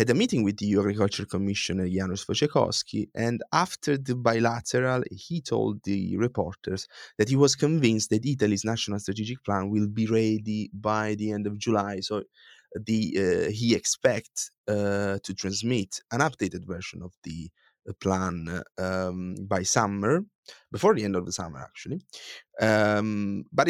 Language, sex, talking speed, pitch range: English, male, 150 wpm, 100-120 Hz